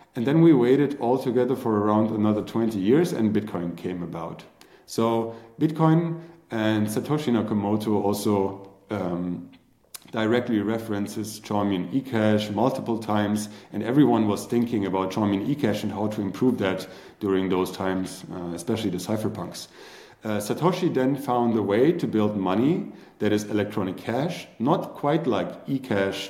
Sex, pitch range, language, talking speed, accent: male, 95-115 Hz, English, 145 wpm, German